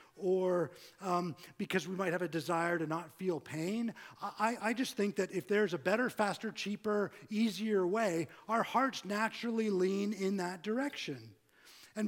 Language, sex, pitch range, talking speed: English, male, 160-220 Hz, 165 wpm